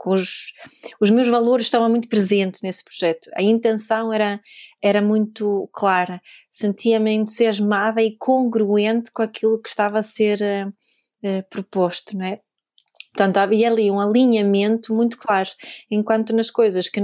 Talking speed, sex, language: 145 wpm, female, Portuguese